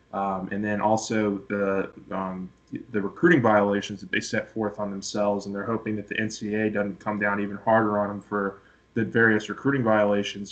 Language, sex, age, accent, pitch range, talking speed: English, male, 20-39, American, 105-115 Hz, 190 wpm